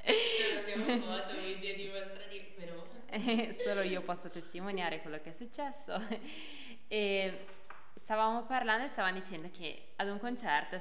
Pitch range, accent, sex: 170-220 Hz, native, female